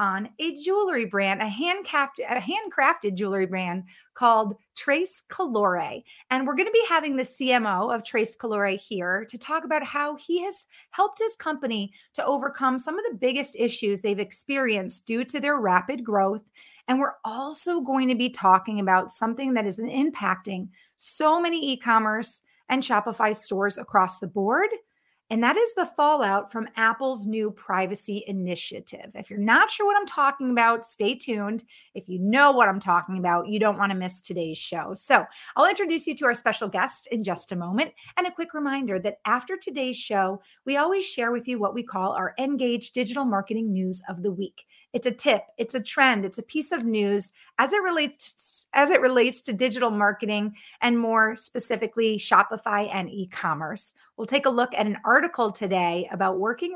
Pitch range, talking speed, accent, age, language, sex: 200-275 Hz, 185 wpm, American, 30-49, English, female